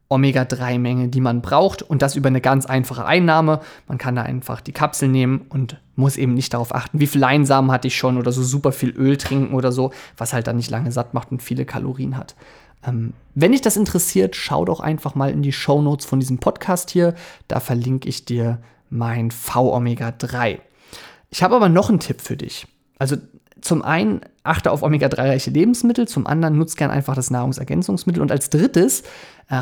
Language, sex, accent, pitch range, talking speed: German, male, German, 130-155 Hz, 200 wpm